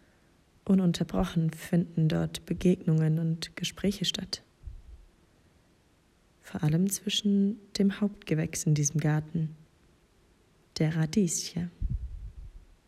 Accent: German